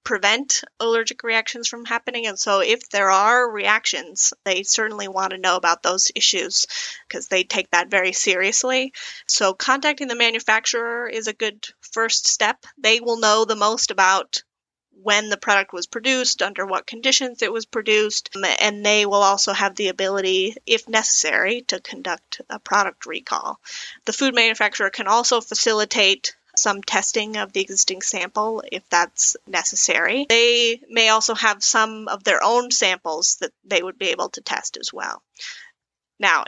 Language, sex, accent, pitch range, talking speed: English, female, American, 200-235 Hz, 165 wpm